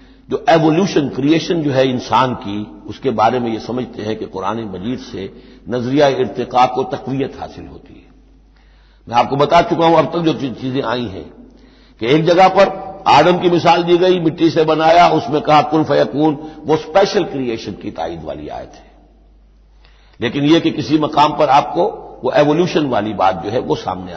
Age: 60-79